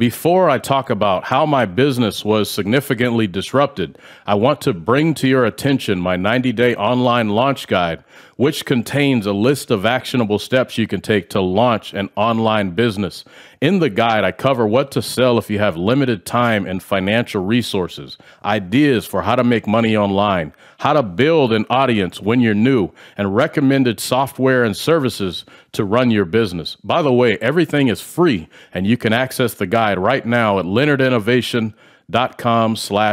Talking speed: 170 wpm